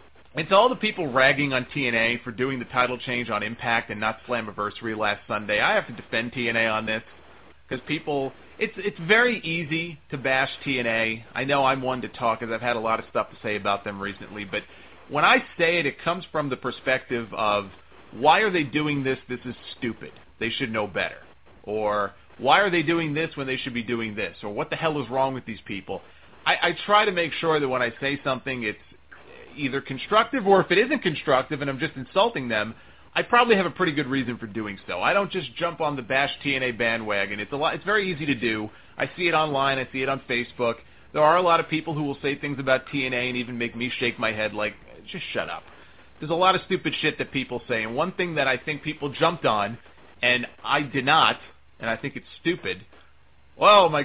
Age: 30-49